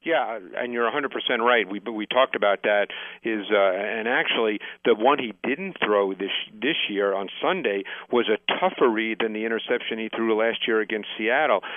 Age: 50-69